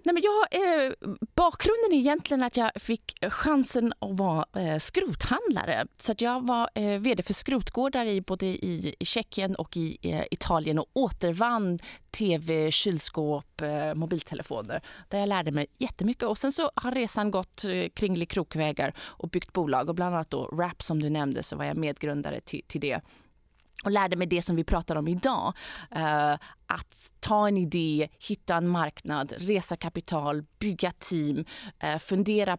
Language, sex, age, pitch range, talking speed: Swedish, female, 20-39, 160-225 Hz, 170 wpm